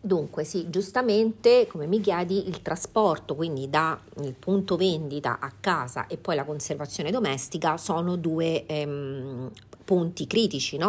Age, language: 40-59, Italian